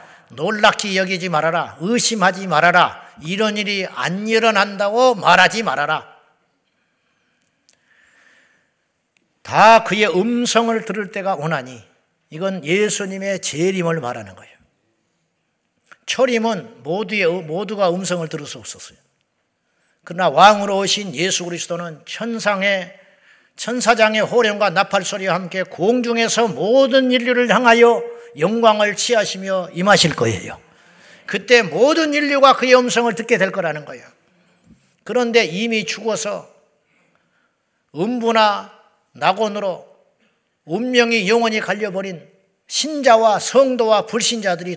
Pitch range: 185-235 Hz